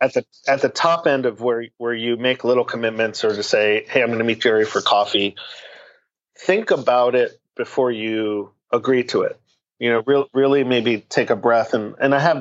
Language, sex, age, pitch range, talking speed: English, male, 40-59, 110-125 Hz, 215 wpm